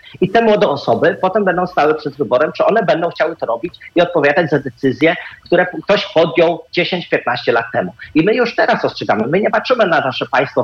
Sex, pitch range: male, 155-205 Hz